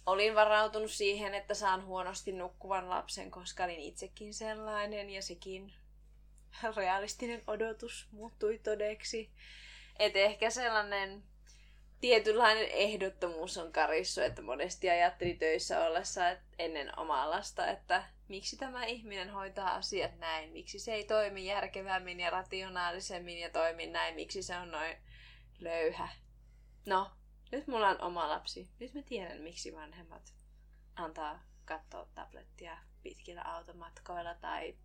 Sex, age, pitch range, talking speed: female, 20-39, 170-215 Hz, 125 wpm